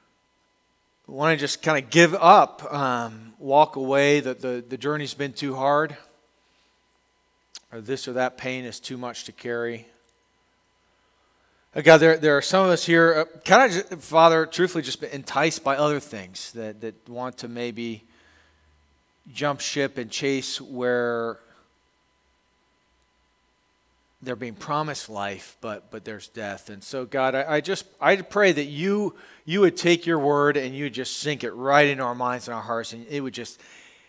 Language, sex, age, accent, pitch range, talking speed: English, male, 40-59, American, 115-150 Hz, 170 wpm